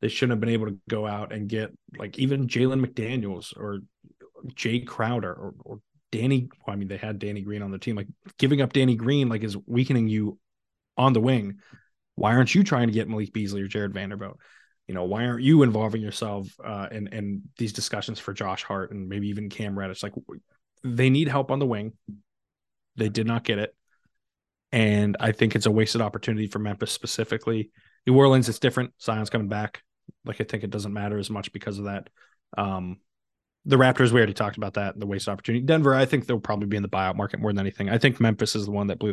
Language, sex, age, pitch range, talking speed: English, male, 20-39, 105-120 Hz, 220 wpm